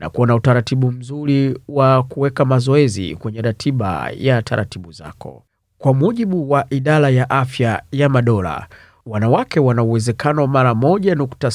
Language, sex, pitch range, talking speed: Swahili, male, 110-145 Hz, 135 wpm